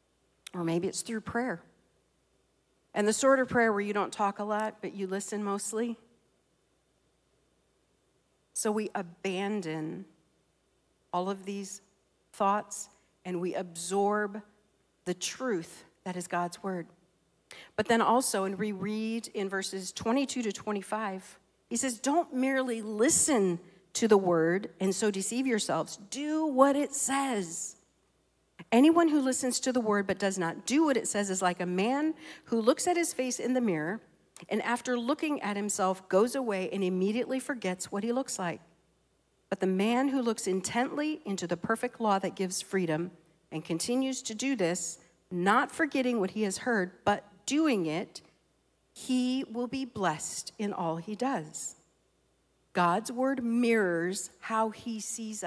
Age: 50-69